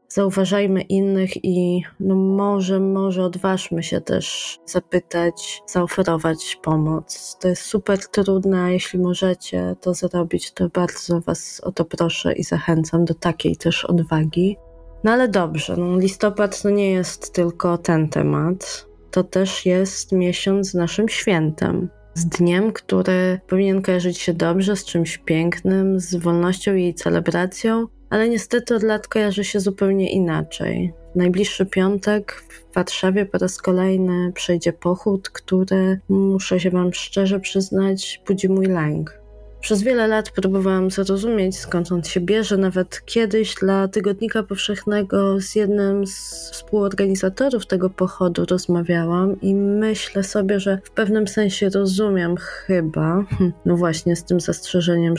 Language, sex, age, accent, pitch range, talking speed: Polish, female, 20-39, native, 175-200 Hz, 135 wpm